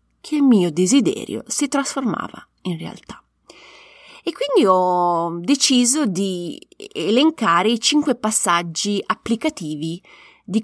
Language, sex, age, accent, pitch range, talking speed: Italian, female, 30-49, native, 180-230 Hz, 105 wpm